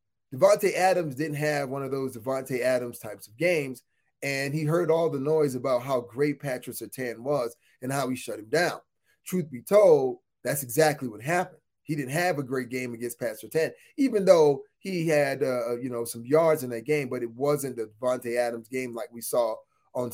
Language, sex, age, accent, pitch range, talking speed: English, male, 30-49, American, 135-175 Hz, 205 wpm